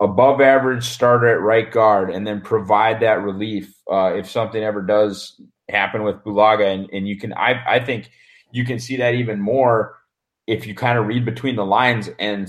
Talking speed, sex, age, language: 195 wpm, male, 30-49, English